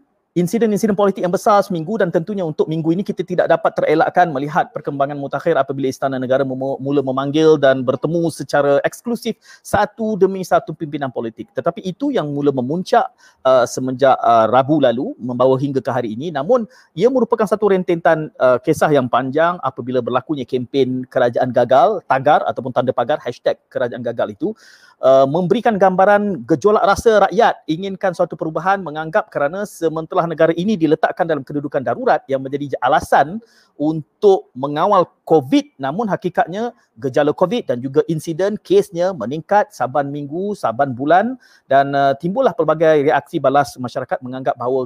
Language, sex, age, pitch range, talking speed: Malay, male, 30-49, 140-190 Hz, 150 wpm